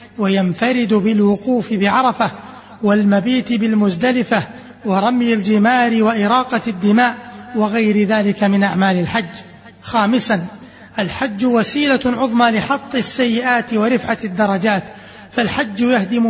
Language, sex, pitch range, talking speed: Arabic, male, 210-250 Hz, 90 wpm